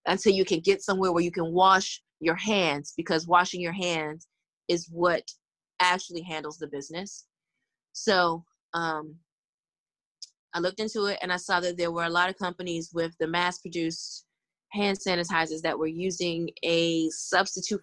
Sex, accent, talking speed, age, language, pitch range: female, American, 165 wpm, 20-39, English, 165-190 Hz